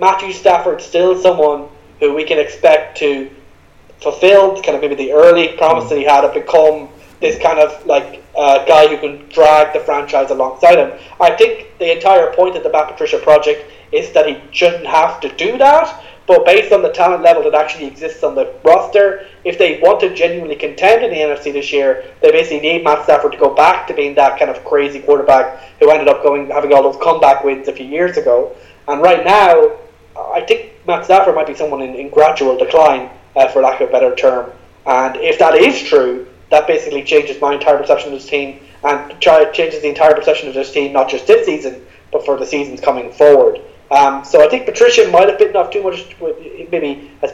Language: English